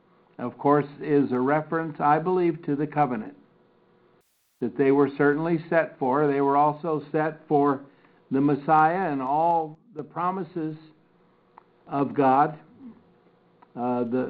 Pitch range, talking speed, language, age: 125-155 Hz, 125 wpm, English, 60-79